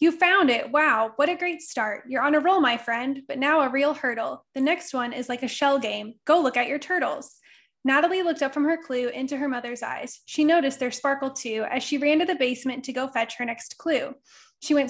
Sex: female